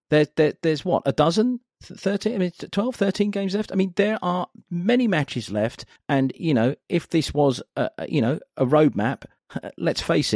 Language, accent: English, British